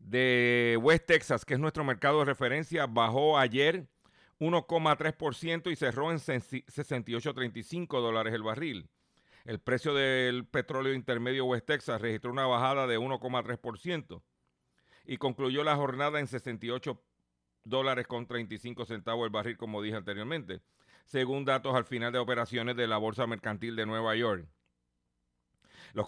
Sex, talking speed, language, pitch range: male, 140 wpm, Spanish, 110-140 Hz